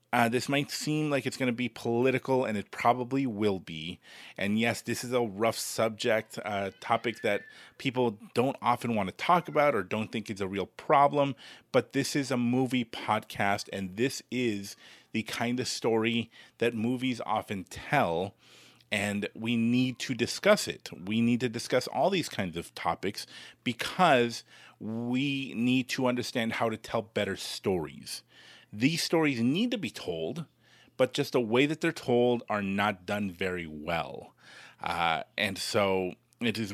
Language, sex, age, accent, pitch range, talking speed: English, male, 30-49, American, 105-130 Hz, 170 wpm